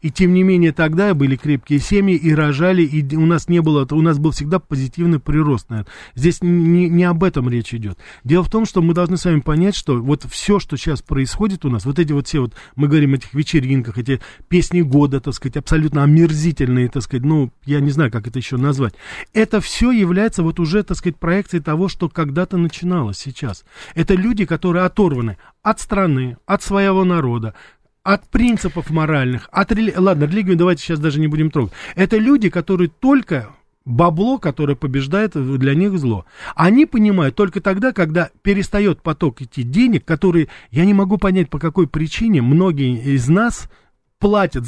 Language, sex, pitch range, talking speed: Russian, male, 140-190 Hz, 185 wpm